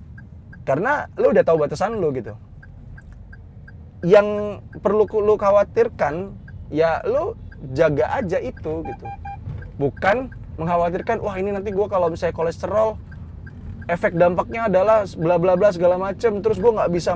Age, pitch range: 20-39, 115-175 Hz